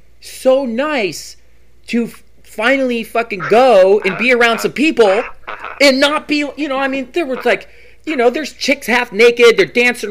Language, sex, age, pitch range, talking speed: English, male, 30-49, 185-270 Hz, 180 wpm